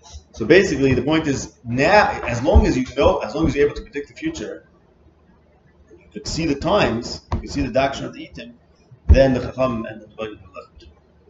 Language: English